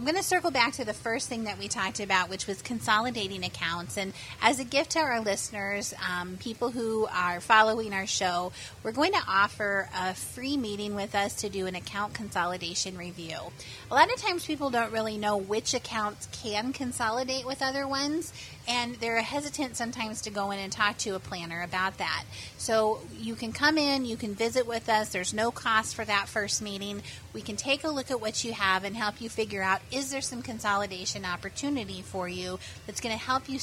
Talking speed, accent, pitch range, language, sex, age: 210 wpm, American, 195-250 Hz, English, female, 30-49